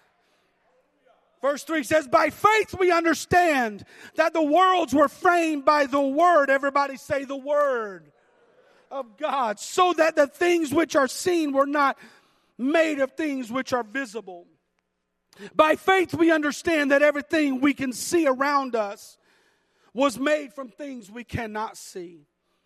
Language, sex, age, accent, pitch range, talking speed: English, male, 40-59, American, 235-320 Hz, 145 wpm